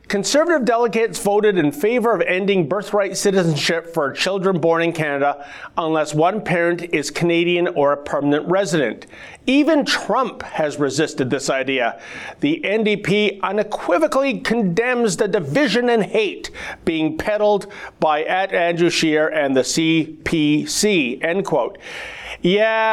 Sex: male